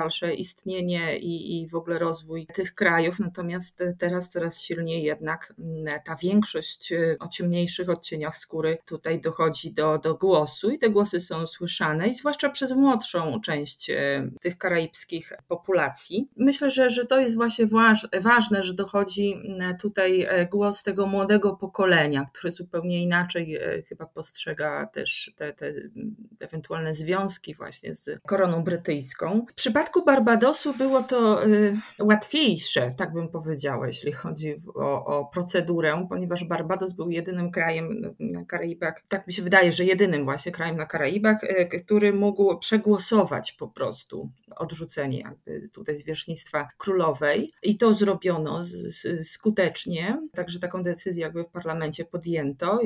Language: Polish